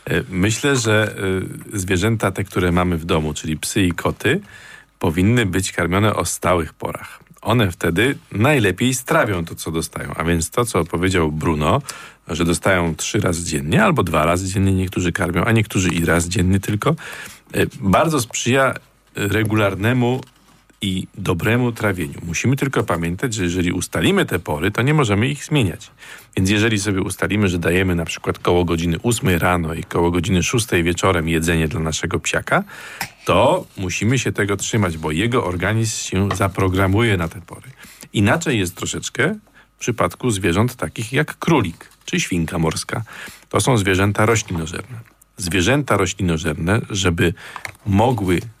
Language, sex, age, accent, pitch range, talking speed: Polish, male, 40-59, native, 85-110 Hz, 150 wpm